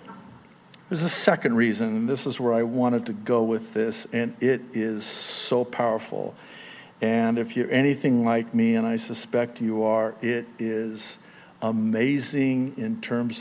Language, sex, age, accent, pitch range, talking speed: English, male, 50-69, American, 115-140 Hz, 155 wpm